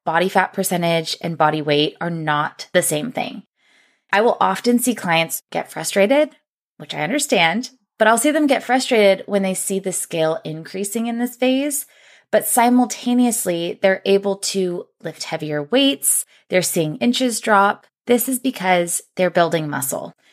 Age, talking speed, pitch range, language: 20-39, 160 wpm, 165-215 Hz, English